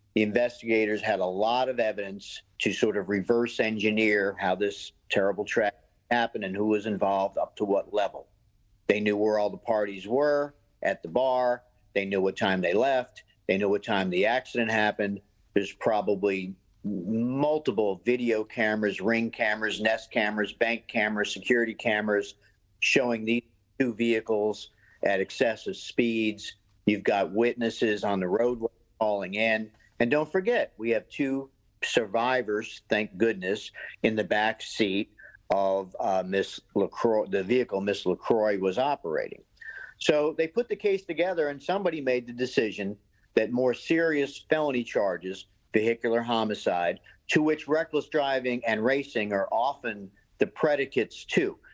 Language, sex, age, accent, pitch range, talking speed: English, male, 50-69, American, 100-120 Hz, 145 wpm